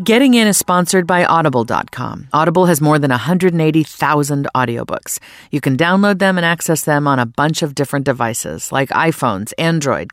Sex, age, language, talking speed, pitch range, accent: female, 40-59, English, 165 wpm, 135-180 Hz, American